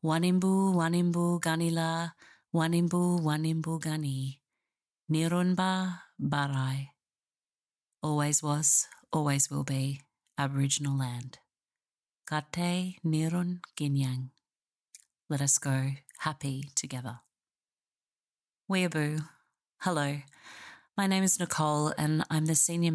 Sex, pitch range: female, 140-170 Hz